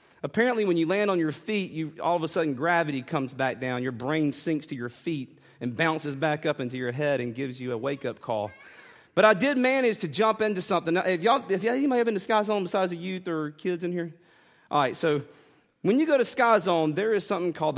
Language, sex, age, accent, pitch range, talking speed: English, male, 30-49, American, 135-195 Hz, 245 wpm